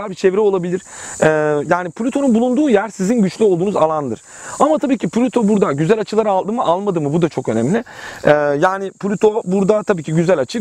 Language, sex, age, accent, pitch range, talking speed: Turkish, male, 40-59, native, 155-215 Hz, 200 wpm